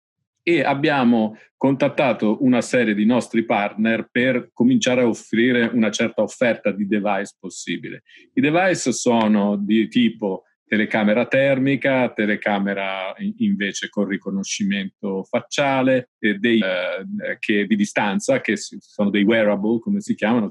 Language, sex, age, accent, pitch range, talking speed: Italian, male, 50-69, native, 105-135 Hz, 125 wpm